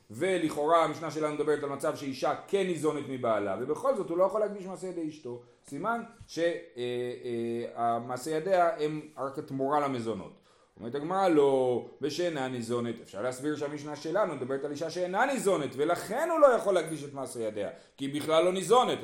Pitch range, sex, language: 145-210 Hz, male, Hebrew